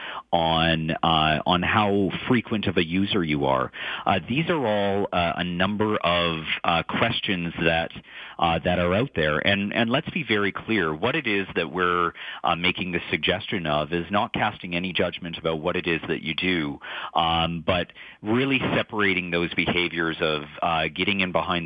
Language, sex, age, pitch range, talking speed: English, male, 40-59, 80-95 Hz, 185 wpm